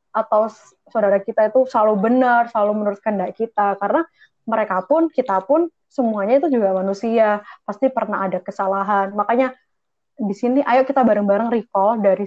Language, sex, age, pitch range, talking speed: Indonesian, female, 20-39, 200-240 Hz, 150 wpm